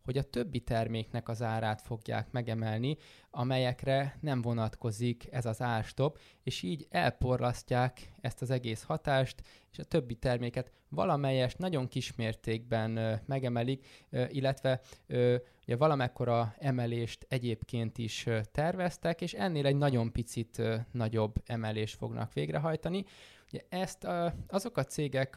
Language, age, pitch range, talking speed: Hungarian, 20-39, 115-140 Hz, 115 wpm